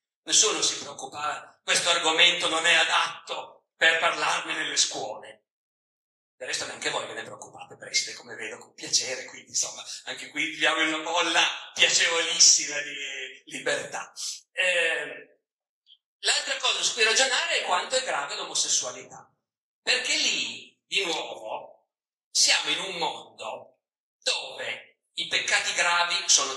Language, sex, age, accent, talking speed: Italian, male, 50-69, native, 130 wpm